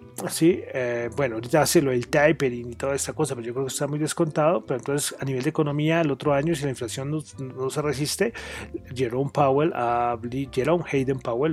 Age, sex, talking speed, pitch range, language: 30-49, male, 220 wpm, 130-165 Hz, Spanish